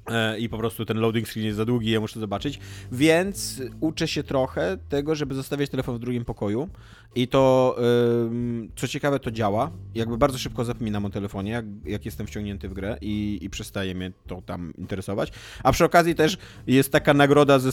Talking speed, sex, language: 195 wpm, male, Polish